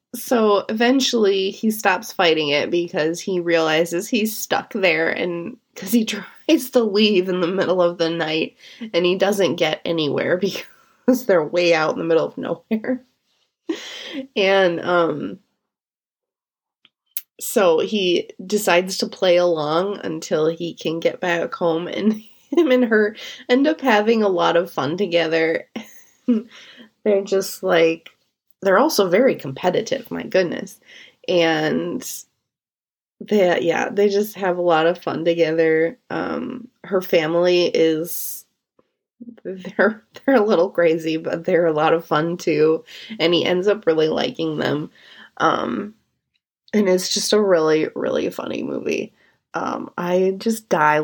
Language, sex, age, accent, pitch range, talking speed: English, female, 20-39, American, 170-225 Hz, 140 wpm